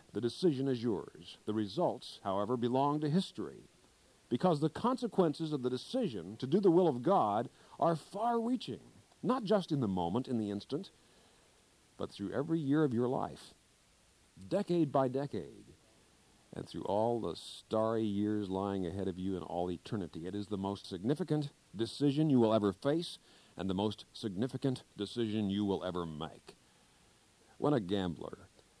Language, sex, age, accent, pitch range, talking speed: English, male, 50-69, American, 100-150 Hz, 160 wpm